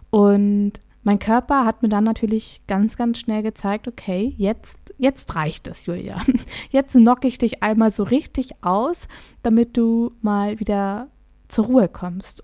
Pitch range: 195-225 Hz